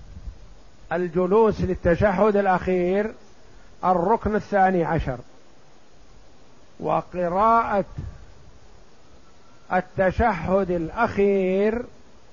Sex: male